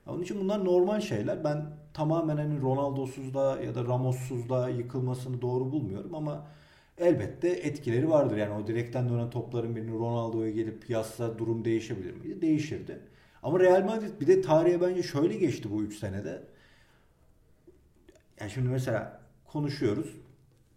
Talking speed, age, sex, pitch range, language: 140 wpm, 40-59, male, 115-150 Hz, Turkish